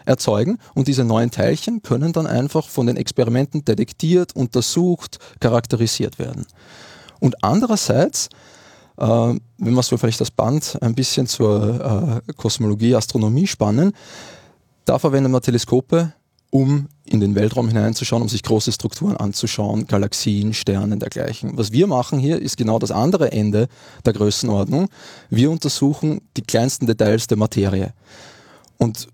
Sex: male